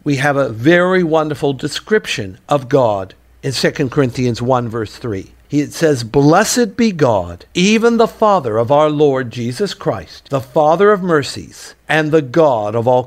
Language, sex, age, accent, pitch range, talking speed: English, male, 60-79, American, 125-170 Hz, 165 wpm